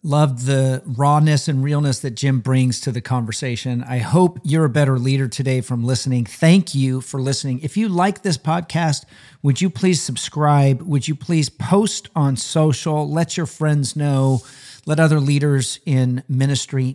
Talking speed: 170 wpm